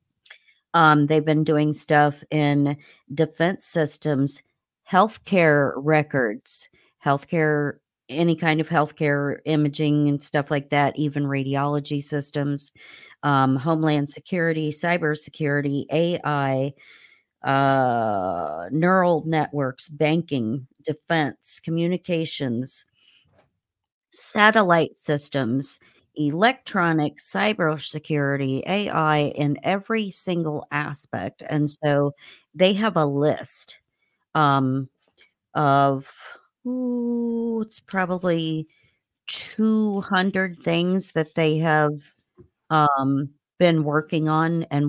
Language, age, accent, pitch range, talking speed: English, 50-69, American, 145-165 Hz, 85 wpm